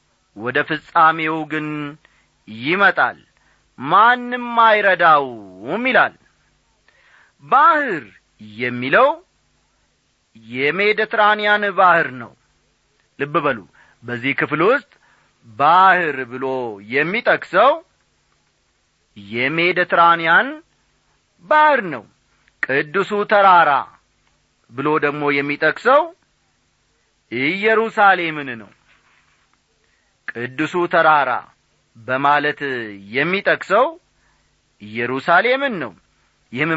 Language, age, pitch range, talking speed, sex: Amharic, 40-59, 145-210 Hz, 60 wpm, male